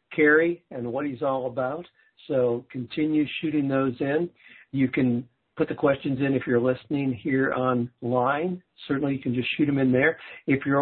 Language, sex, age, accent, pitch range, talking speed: English, male, 60-79, American, 125-150 Hz, 180 wpm